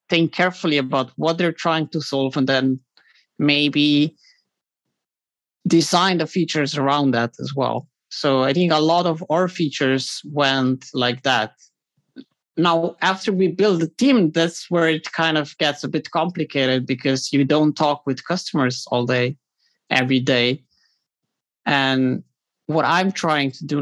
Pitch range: 130-155 Hz